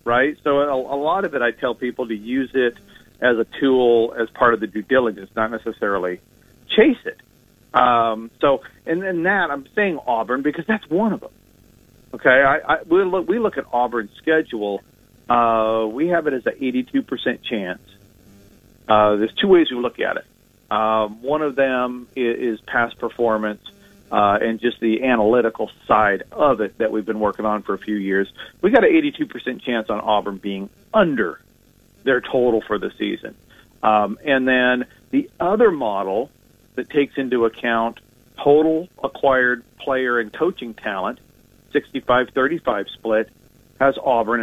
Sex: male